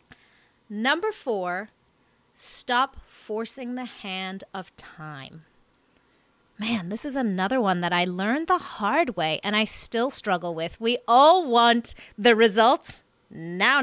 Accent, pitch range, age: American, 185-260 Hz, 30-49